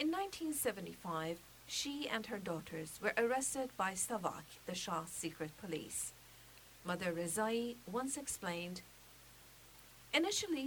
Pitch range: 165-230 Hz